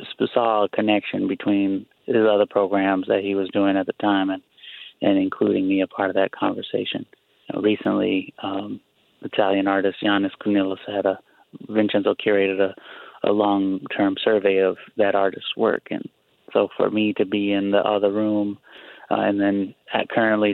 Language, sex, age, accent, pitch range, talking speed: English, male, 20-39, American, 100-110 Hz, 165 wpm